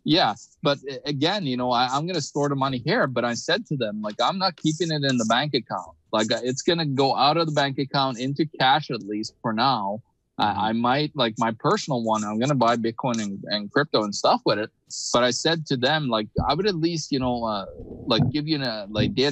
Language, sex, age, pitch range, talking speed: English, male, 20-39, 120-155 Hz, 240 wpm